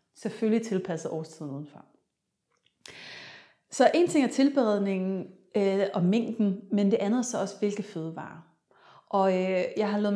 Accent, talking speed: native, 140 wpm